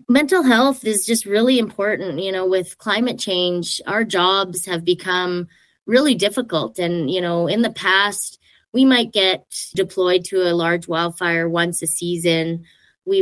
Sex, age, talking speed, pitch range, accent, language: female, 20-39, 160 wpm, 170-195 Hz, American, English